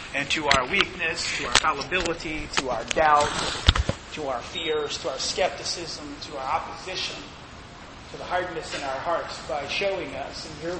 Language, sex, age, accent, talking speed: English, male, 30-49, American, 165 wpm